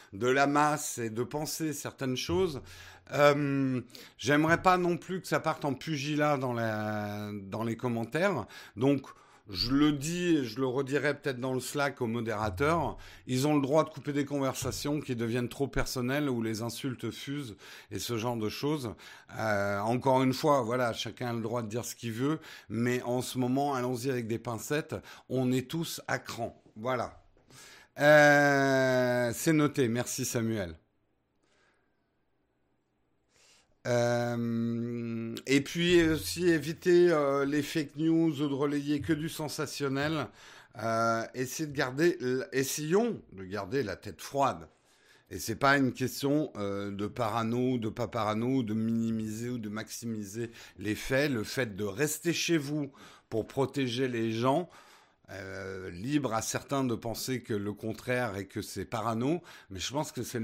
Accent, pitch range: French, 115-145 Hz